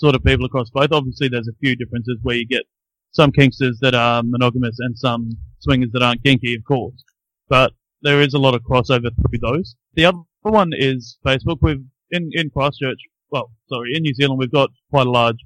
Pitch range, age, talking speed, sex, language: 120-140 Hz, 20-39, 210 wpm, male, English